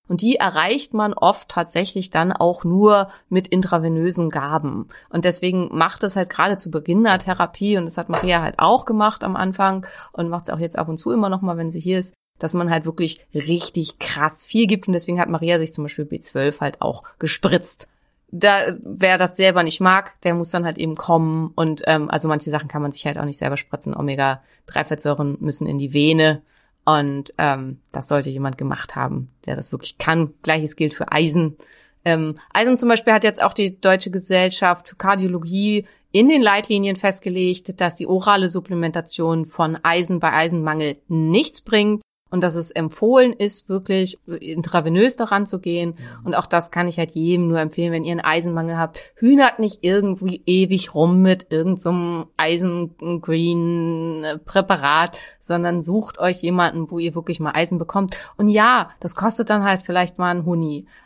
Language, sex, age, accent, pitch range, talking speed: German, female, 30-49, German, 160-190 Hz, 185 wpm